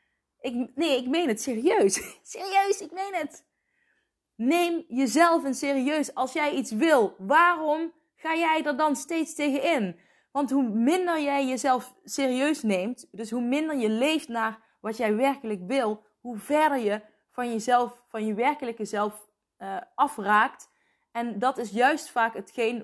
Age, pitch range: 20-39, 210-285 Hz